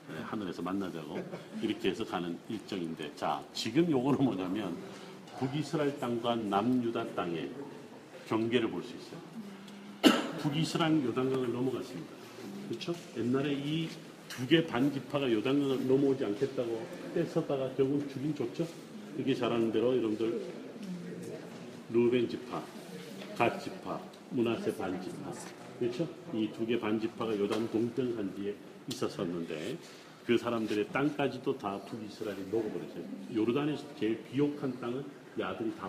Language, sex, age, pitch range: Korean, male, 40-59, 110-140 Hz